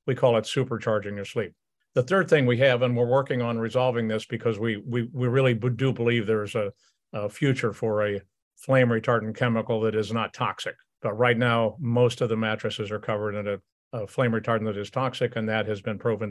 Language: English